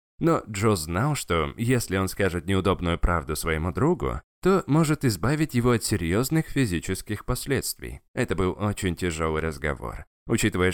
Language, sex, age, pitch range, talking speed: Russian, male, 20-39, 85-130 Hz, 140 wpm